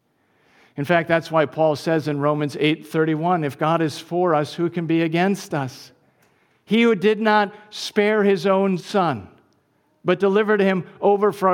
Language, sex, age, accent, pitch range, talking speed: English, male, 50-69, American, 175-240 Hz, 165 wpm